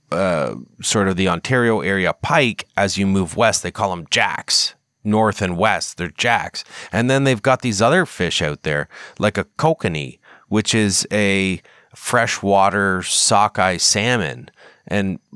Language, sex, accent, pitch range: English, male, American, 90-110 Hz